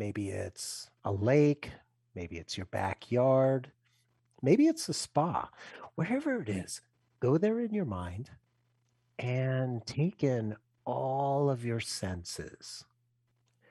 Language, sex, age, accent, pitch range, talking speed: English, male, 50-69, American, 105-130 Hz, 120 wpm